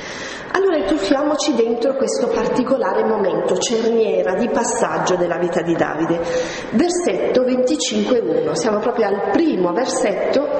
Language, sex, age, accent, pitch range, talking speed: Italian, female, 40-59, native, 195-320 Hz, 115 wpm